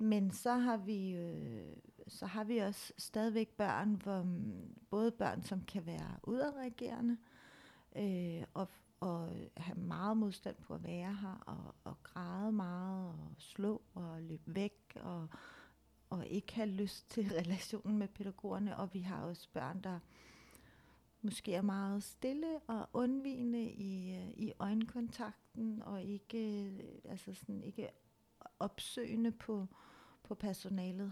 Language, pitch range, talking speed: Danish, 190-225 Hz, 125 wpm